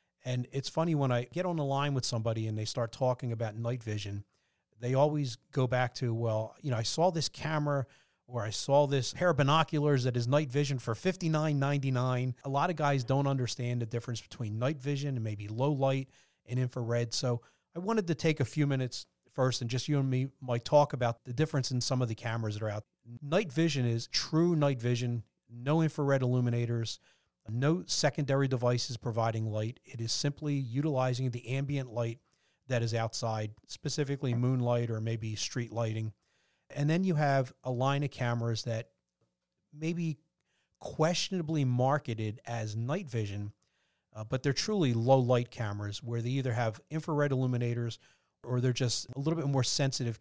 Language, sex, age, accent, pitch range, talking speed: English, male, 40-59, American, 115-145 Hz, 185 wpm